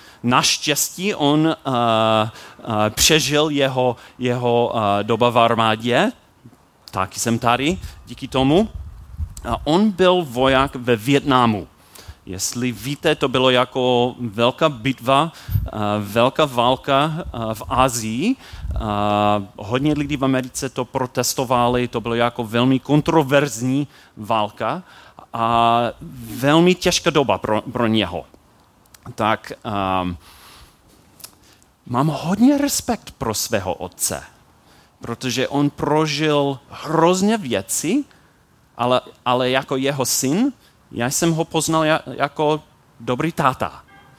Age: 30-49